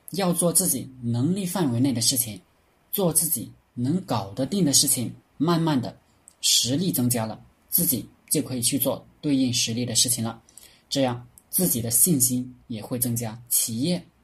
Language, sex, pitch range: Chinese, male, 115-145 Hz